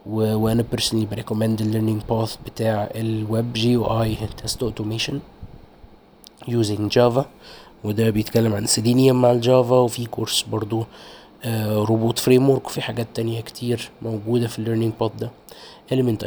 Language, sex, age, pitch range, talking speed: Arabic, male, 20-39, 110-125 Hz, 150 wpm